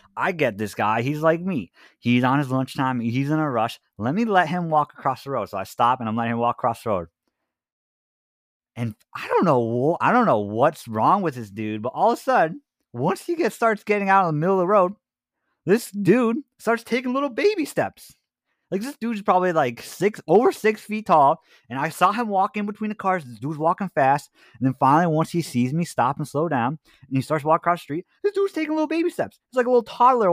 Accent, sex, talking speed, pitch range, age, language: American, male, 245 wpm, 120-200 Hz, 30-49, English